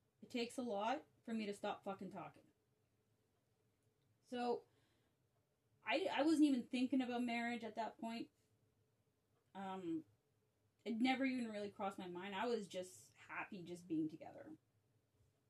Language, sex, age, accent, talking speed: English, female, 20-39, American, 140 wpm